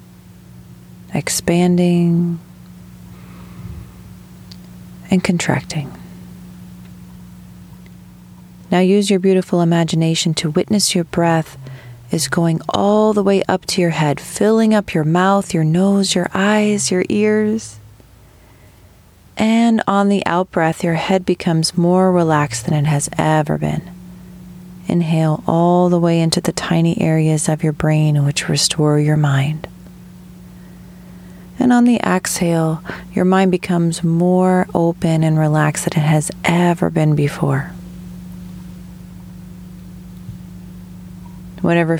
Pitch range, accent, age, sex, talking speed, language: 120-180 Hz, American, 30-49, female, 110 wpm, English